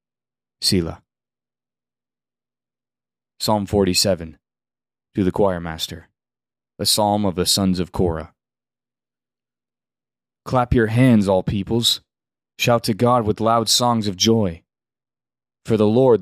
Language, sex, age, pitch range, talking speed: English, male, 20-39, 95-120 Hz, 110 wpm